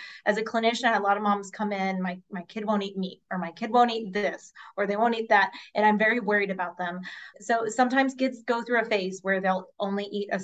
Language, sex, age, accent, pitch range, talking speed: English, female, 20-39, American, 190-230 Hz, 265 wpm